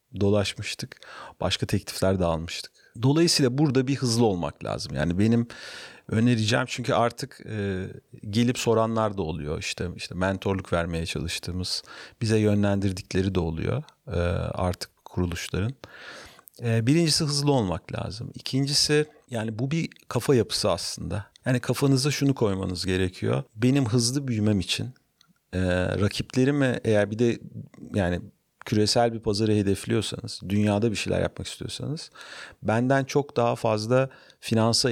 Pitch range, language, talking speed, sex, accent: 100-125 Hz, Turkish, 125 wpm, male, native